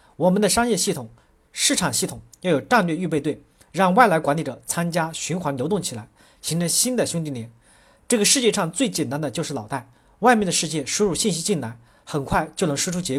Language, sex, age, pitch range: Chinese, male, 40-59, 140-195 Hz